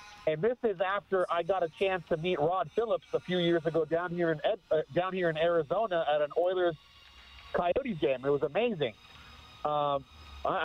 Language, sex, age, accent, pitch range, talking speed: English, male, 40-59, American, 140-175 Hz, 195 wpm